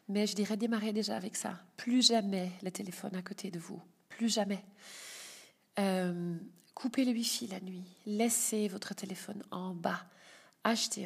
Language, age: French, 40-59